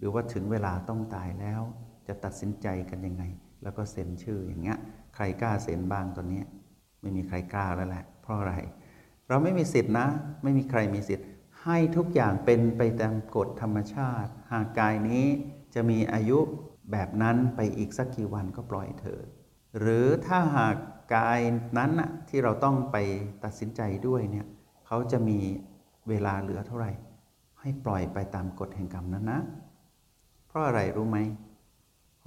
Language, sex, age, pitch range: Thai, male, 60-79, 95-125 Hz